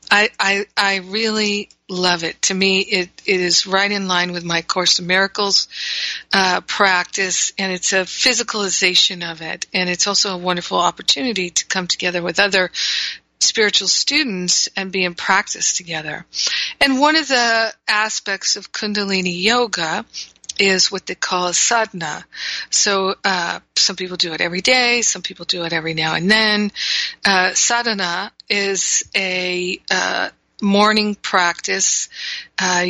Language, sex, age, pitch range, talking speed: English, female, 50-69, 180-205 Hz, 150 wpm